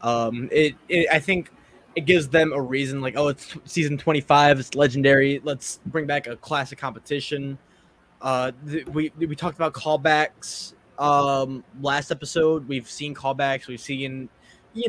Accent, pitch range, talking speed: American, 135-170 Hz, 155 wpm